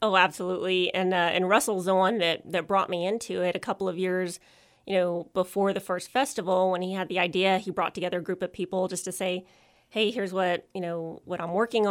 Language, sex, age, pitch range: English, female, 30-49, 180-210 Hz